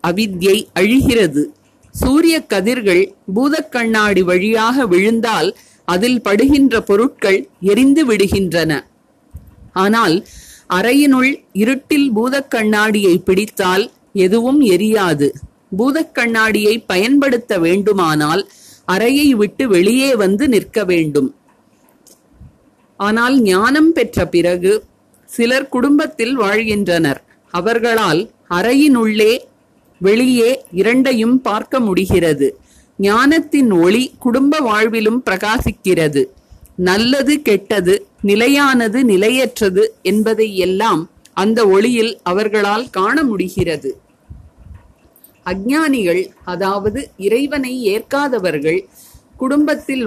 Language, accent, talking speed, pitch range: Tamil, native, 60 wpm, 190-255 Hz